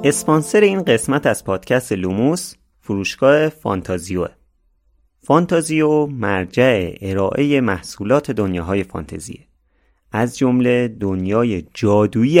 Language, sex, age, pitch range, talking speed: Persian, male, 30-49, 90-135 Hz, 85 wpm